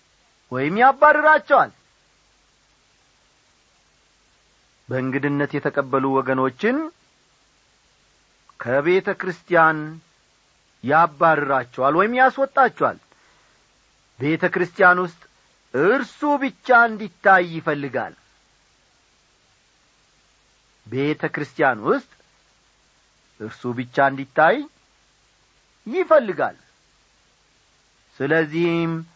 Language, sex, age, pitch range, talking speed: Amharic, male, 50-69, 140-225 Hz, 45 wpm